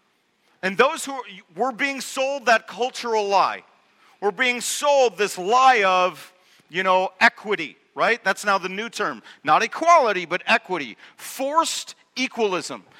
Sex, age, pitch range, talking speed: male, 50-69, 190-245 Hz, 140 wpm